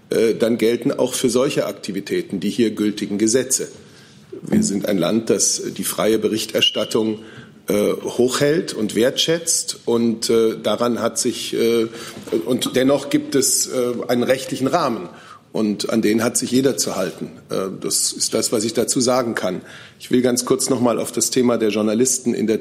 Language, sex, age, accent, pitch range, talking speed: German, male, 40-59, German, 110-125 Hz, 175 wpm